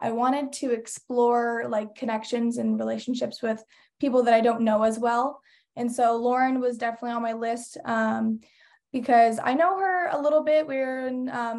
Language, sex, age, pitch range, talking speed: English, female, 20-39, 220-245 Hz, 180 wpm